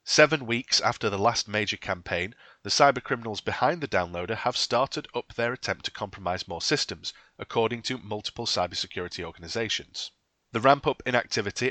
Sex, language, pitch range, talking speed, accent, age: male, English, 100-120 Hz, 155 wpm, British, 30-49